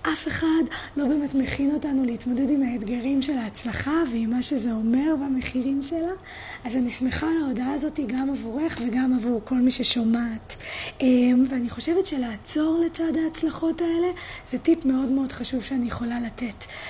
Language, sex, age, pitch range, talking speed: Hebrew, female, 20-39, 245-300 Hz, 155 wpm